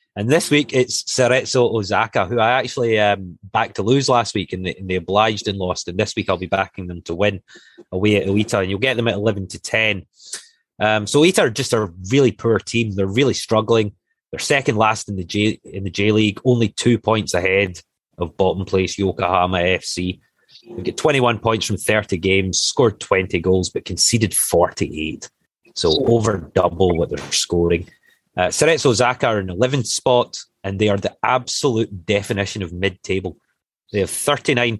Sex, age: male, 30-49